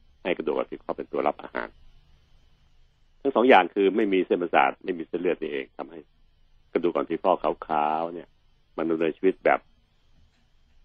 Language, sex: Thai, male